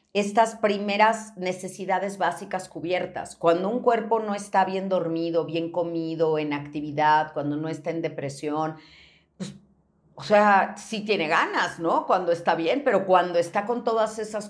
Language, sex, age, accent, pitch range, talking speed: Spanish, female, 40-59, Mexican, 150-205 Hz, 155 wpm